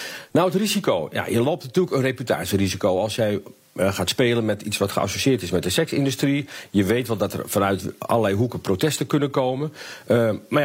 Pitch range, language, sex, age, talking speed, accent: 110-140 Hz, Dutch, male, 50-69, 190 wpm, Dutch